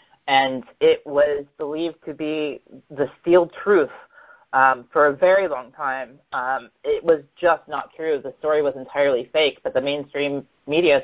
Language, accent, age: English, American, 30-49